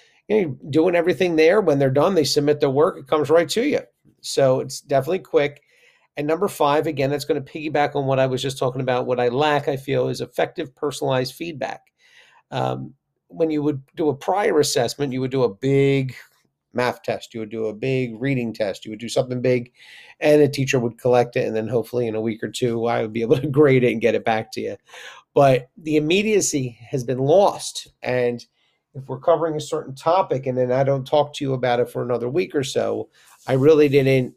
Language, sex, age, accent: English, male, 50-69, American